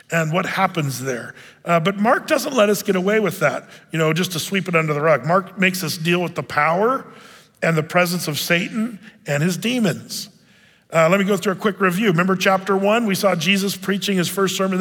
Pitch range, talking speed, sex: 170-215 Hz, 225 wpm, male